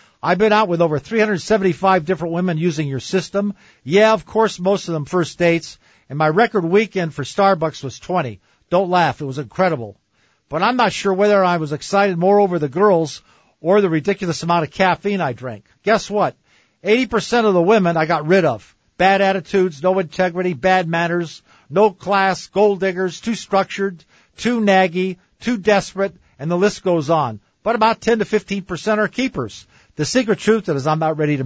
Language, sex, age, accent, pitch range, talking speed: English, male, 50-69, American, 160-205 Hz, 185 wpm